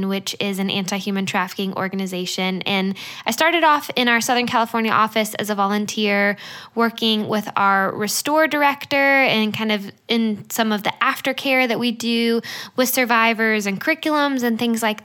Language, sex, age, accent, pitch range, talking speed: English, female, 10-29, American, 205-245 Hz, 165 wpm